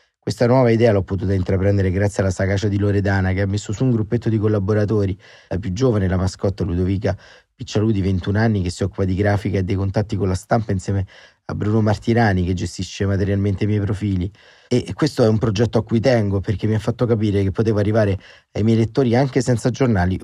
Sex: male